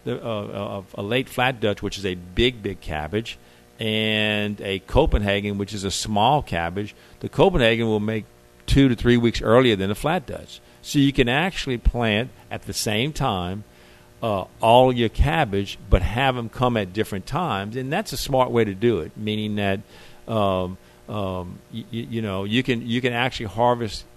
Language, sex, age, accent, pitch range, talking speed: English, male, 50-69, American, 95-120 Hz, 185 wpm